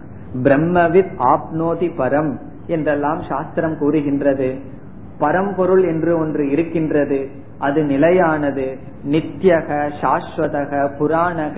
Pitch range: 140-180 Hz